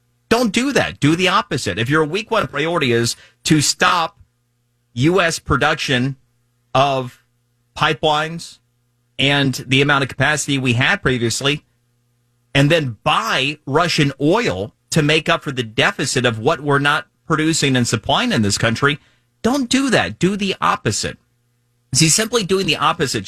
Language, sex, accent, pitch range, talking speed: English, male, American, 110-145 Hz, 150 wpm